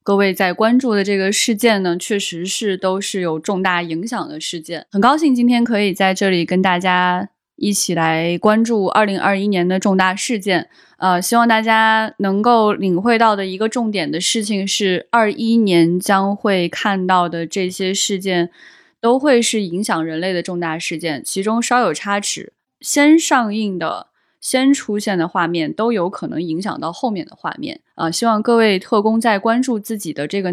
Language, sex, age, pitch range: Chinese, female, 20-39, 180-225 Hz